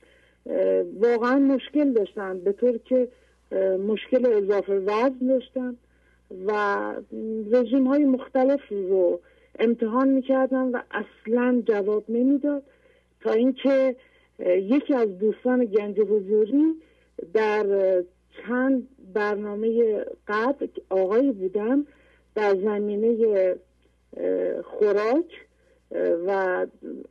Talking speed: 80 wpm